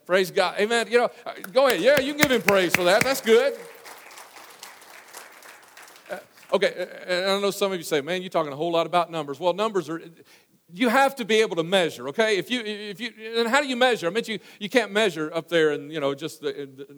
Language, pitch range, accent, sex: English, 170-235 Hz, American, male